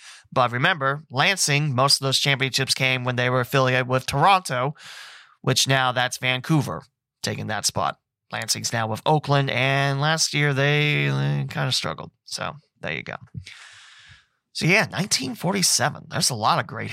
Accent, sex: American, male